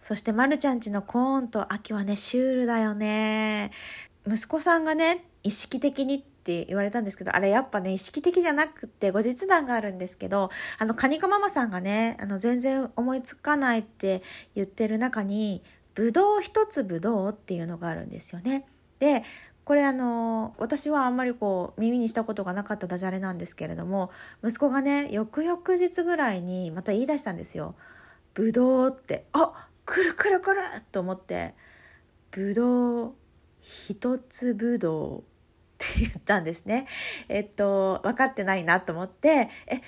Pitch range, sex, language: 200-280 Hz, female, Japanese